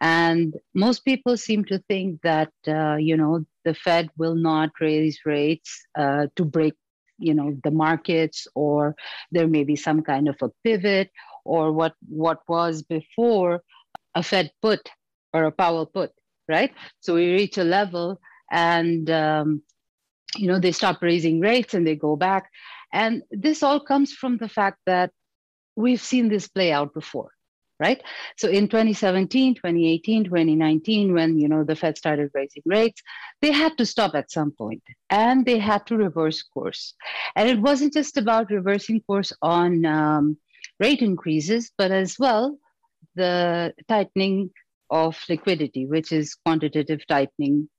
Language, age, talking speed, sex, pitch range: English, 50-69, 155 wpm, female, 155-215 Hz